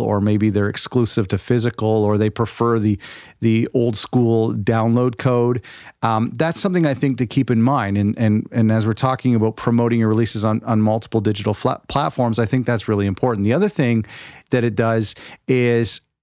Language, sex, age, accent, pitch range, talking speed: English, male, 40-59, American, 110-130 Hz, 190 wpm